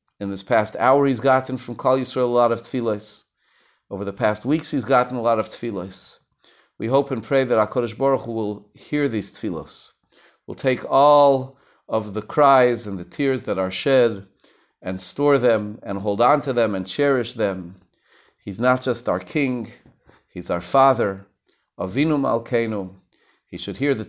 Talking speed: 180 wpm